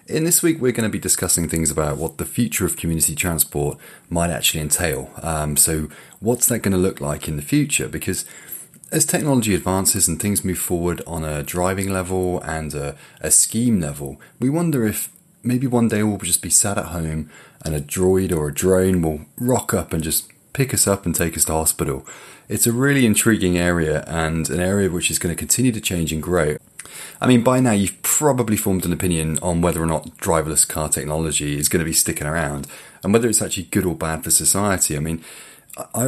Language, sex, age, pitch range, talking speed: English, male, 30-49, 80-105 Hz, 215 wpm